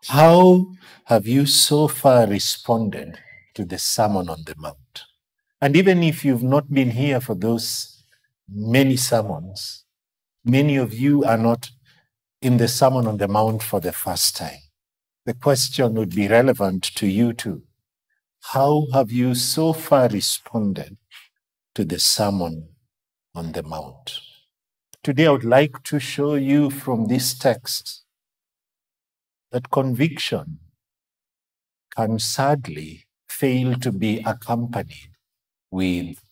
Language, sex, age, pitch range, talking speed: English, male, 60-79, 110-145 Hz, 125 wpm